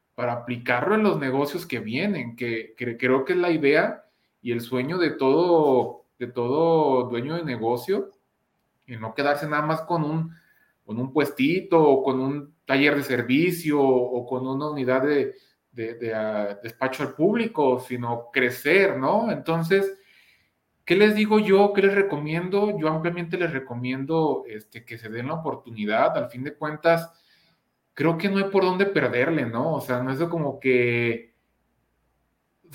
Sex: male